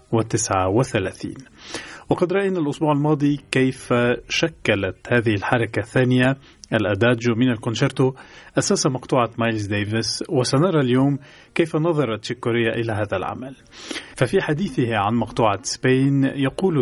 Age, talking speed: 40-59, 115 wpm